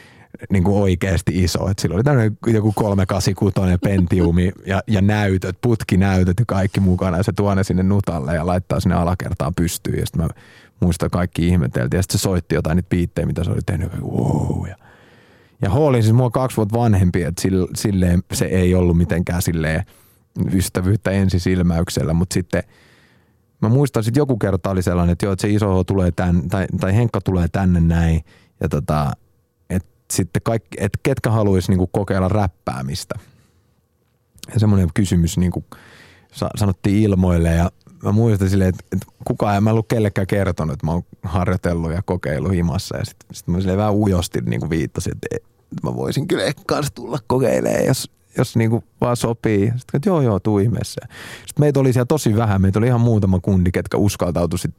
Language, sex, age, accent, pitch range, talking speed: Finnish, male, 30-49, native, 90-110 Hz, 170 wpm